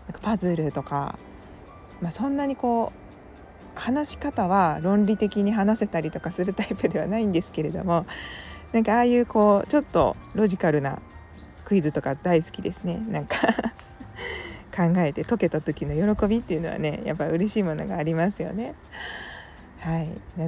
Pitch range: 155-210 Hz